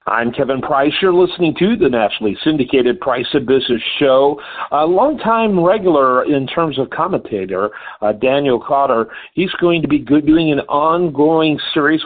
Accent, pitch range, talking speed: American, 120-150 Hz, 155 wpm